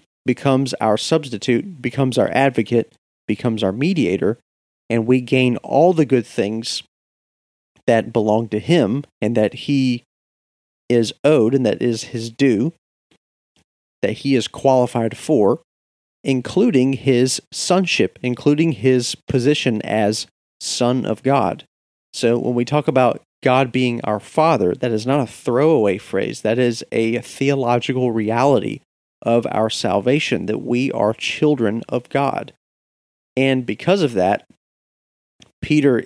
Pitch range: 110-135 Hz